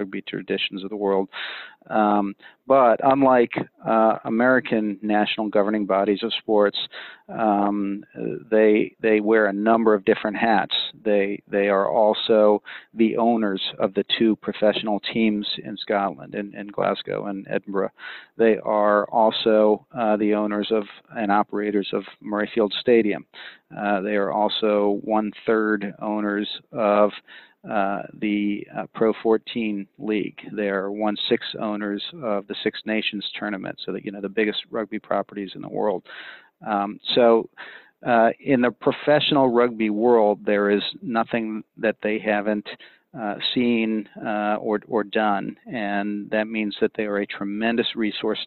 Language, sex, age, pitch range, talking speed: English, male, 40-59, 100-110 Hz, 145 wpm